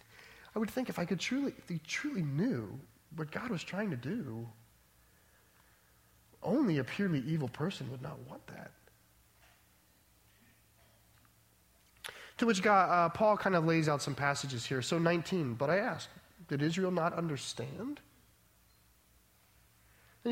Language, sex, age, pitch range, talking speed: English, male, 30-49, 120-175 Hz, 140 wpm